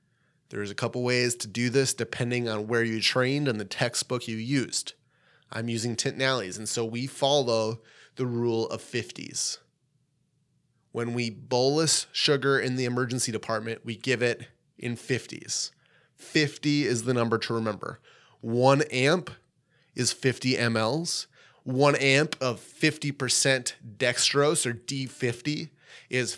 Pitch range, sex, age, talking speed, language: 115-140 Hz, male, 30-49, 140 wpm, English